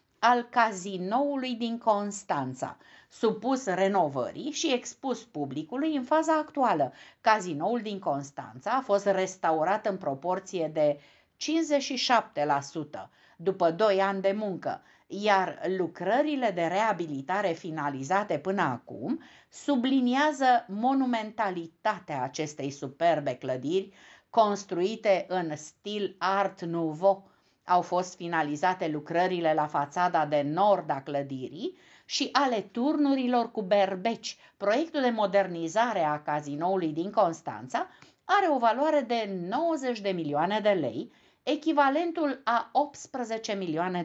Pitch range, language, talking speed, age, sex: 170-250 Hz, Romanian, 110 wpm, 50-69, female